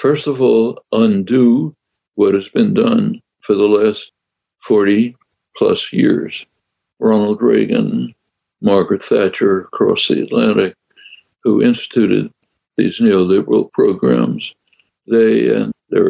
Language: English